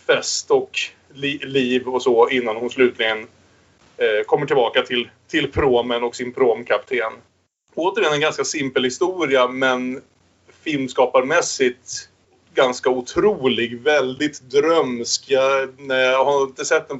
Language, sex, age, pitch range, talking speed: Swedish, male, 30-49, 120-165 Hz, 110 wpm